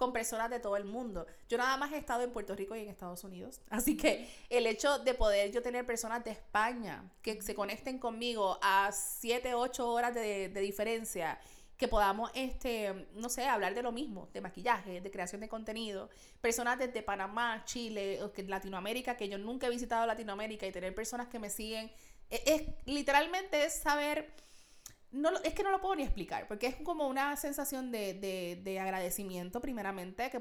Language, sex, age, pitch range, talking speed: Spanish, female, 30-49, 200-250 Hz, 185 wpm